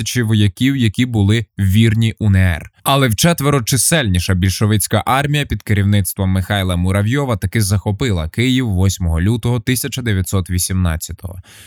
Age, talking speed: 20-39, 100 wpm